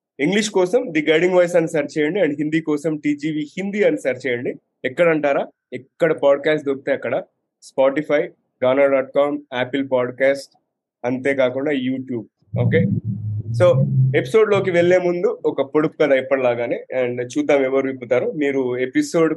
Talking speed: 140 wpm